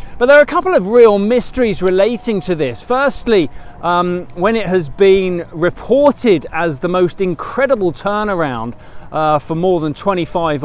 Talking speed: 160 wpm